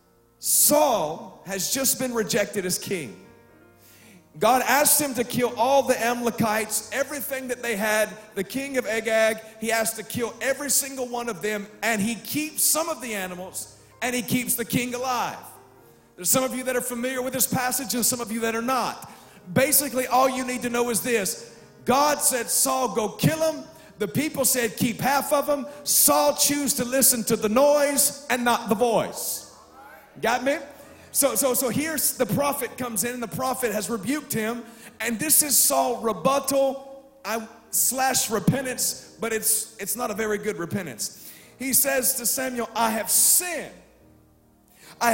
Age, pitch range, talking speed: 40-59, 215-265 Hz, 175 wpm